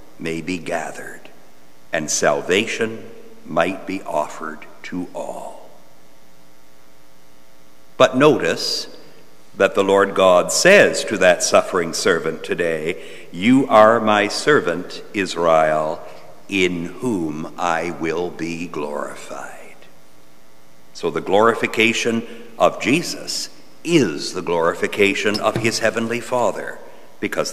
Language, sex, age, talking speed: English, male, 60-79, 100 wpm